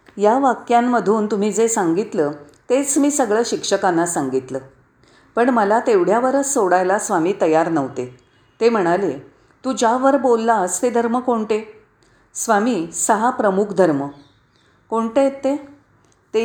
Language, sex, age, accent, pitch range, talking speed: Marathi, female, 40-59, native, 165-235 Hz, 120 wpm